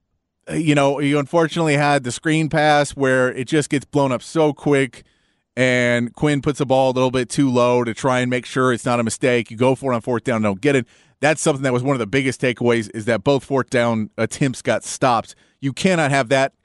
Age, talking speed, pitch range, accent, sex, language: 30-49, 240 wpm, 120-155 Hz, American, male, English